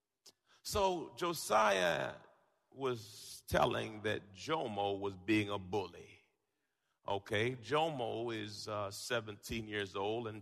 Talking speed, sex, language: 105 wpm, male, English